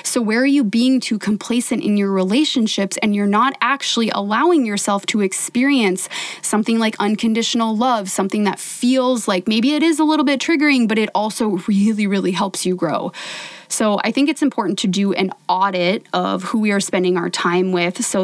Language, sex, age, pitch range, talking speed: English, female, 20-39, 195-240 Hz, 195 wpm